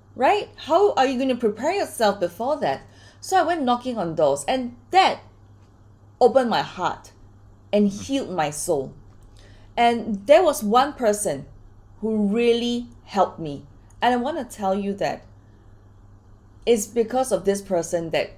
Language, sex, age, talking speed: English, female, 20-39, 155 wpm